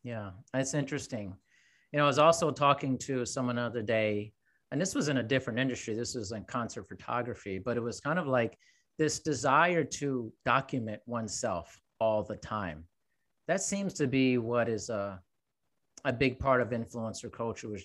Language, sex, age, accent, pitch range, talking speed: English, male, 40-59, American, 115-145 Hz, 180 wpm